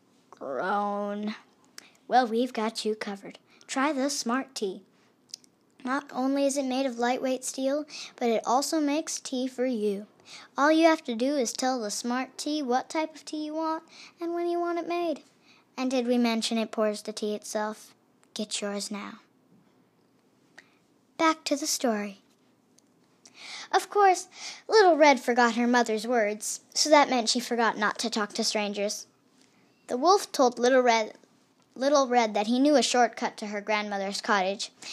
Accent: American